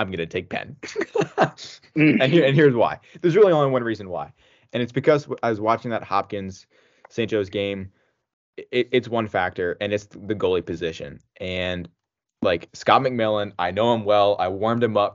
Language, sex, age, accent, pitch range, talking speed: English, male, 20-39, American, 95-115 Hz, 190 wpm